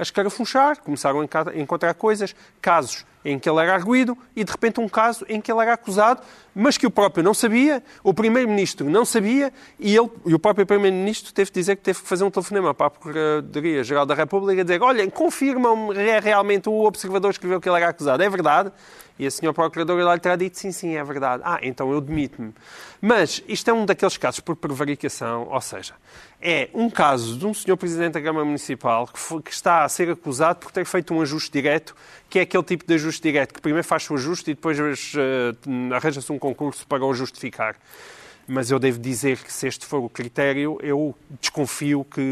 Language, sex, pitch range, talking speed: Portuguese, male, 145-215 Hz, 215 wpm